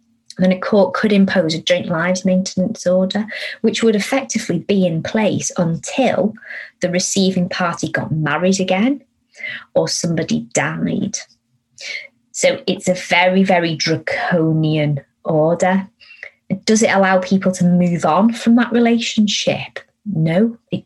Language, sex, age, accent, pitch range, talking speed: English, female, 30-49, British, 160-205 Hz, 130 wpm